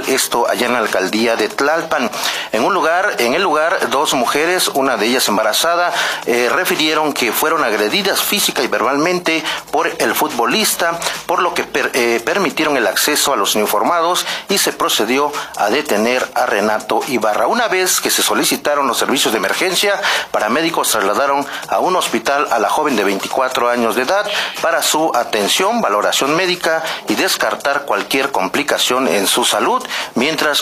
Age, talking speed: 40-59, 165 wpm